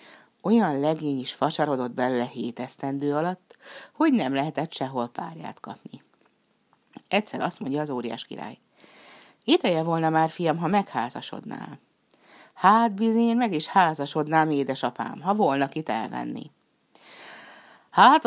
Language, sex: Hungarian, female